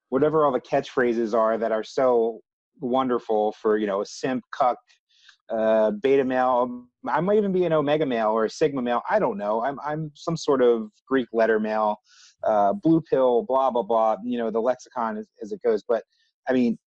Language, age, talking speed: English, 30-49, 200 wpm